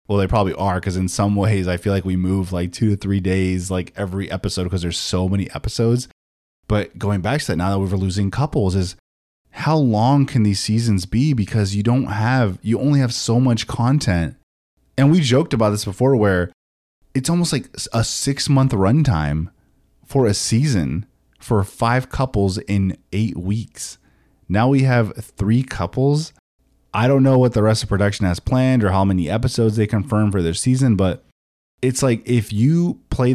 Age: 20-39